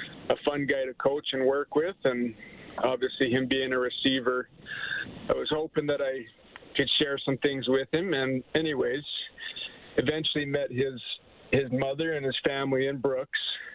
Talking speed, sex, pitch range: 160 wpm, male, 125-155 Hz